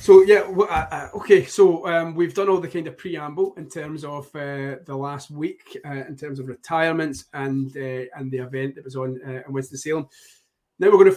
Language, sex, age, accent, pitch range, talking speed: English, male, 20-39, British, 140-170 Hz, 230 wpm